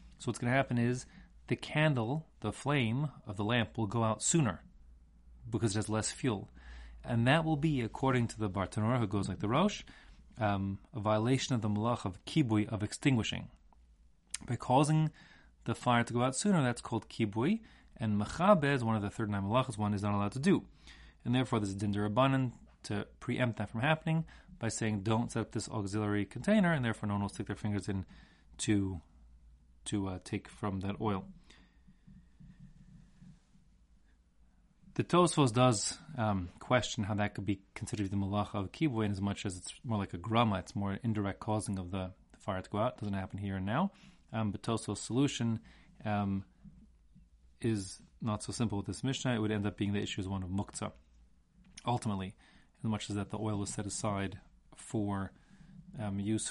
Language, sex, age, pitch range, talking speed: English, male, 30-49, 100-125 Hz, 195 wpm